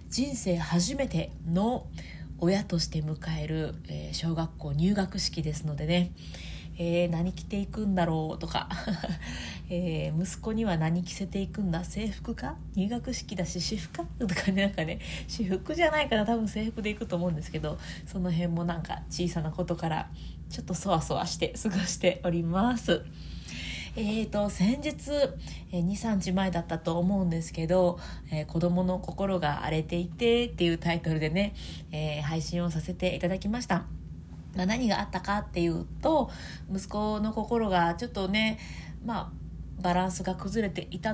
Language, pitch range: Japanese, 165-200 Hz